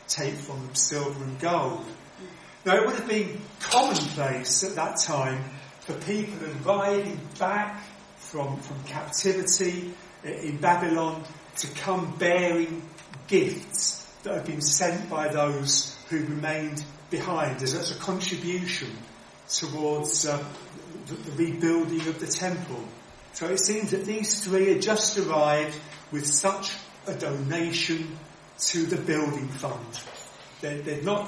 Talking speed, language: 130 wpm, English